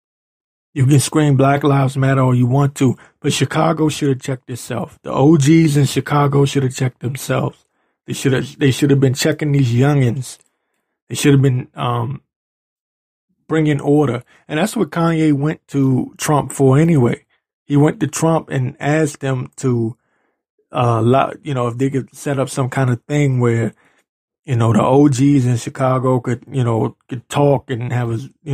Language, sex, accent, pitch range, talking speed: English, male, American, 125-145 Hz, 180 wpm